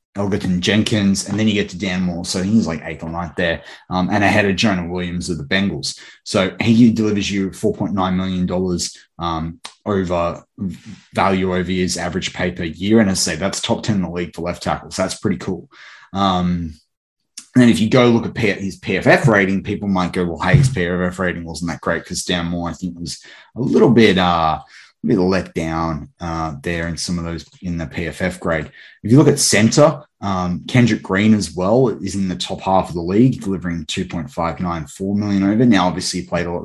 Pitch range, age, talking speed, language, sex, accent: 85-100 Hz, 20-39, 220 wpm, English, male, Australian